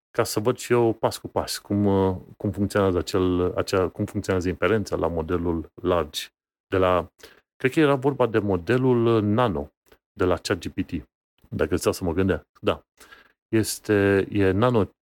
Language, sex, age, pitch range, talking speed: Romanian, male, 30-49, 90-110 Hz, 130 wpm